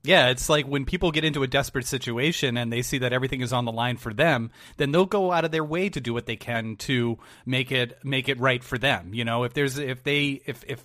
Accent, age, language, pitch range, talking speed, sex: American, 30-49, English, 115-135 Hz, 270 wpm, male